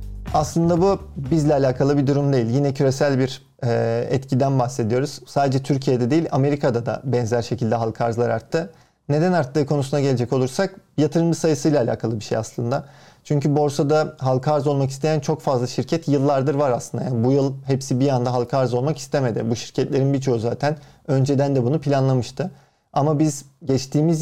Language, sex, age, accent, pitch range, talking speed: Turkish, male, 40-59, native, 130-150 Hz, 160 wpm